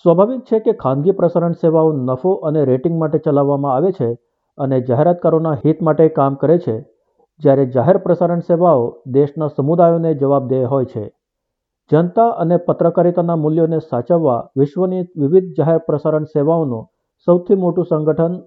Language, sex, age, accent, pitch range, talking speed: Gujarati, male, 50-69, native, 140-175 Hz, 115 wpm